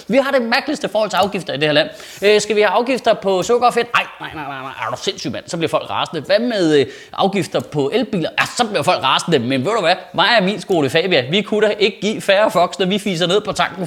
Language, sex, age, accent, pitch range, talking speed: Danish, male, 30-49, native, 140-200 Hz, 280 wpm